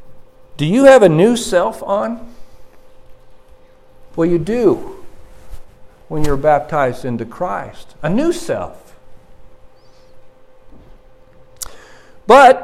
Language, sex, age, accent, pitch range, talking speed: English, male, 60-79, American, 130-175 Hz, 90 wpm